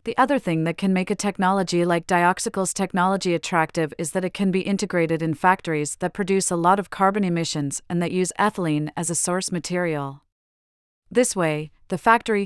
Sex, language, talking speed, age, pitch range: female, English, 190 wpm, 30-49, 165-200 Hz